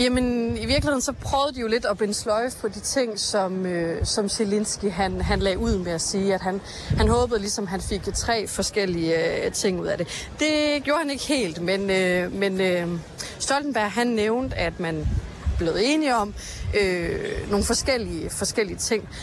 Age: 30-49